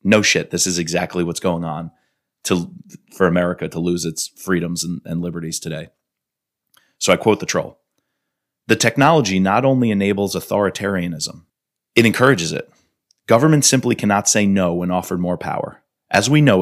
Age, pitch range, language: 30-49, 90-115 Hz, English